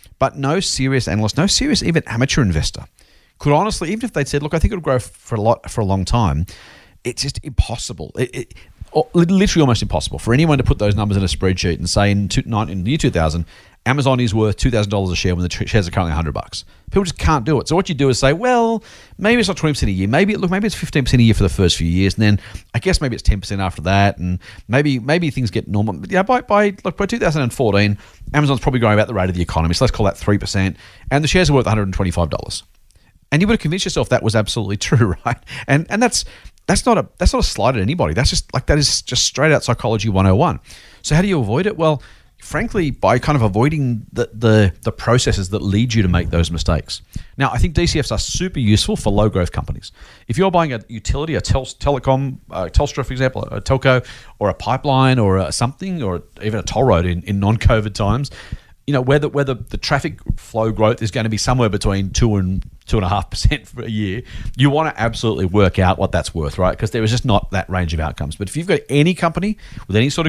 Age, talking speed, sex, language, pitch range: 40-59, 245 wpm, male, English, 95-140 Hz